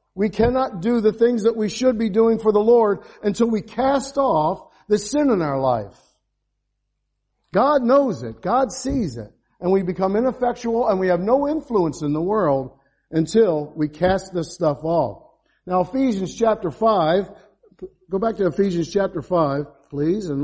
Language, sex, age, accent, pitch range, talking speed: English, male, 50-69, American, 155-215 Hz, 170 wpm